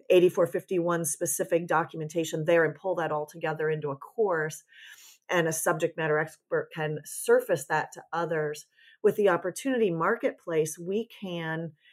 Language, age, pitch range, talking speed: English, 40-59, 160-195 Hz, 140 wpm